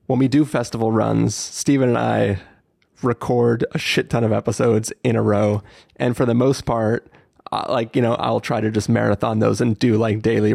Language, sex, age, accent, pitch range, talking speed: English, male, 30-49, American, 110-125 Hz, 200 wpm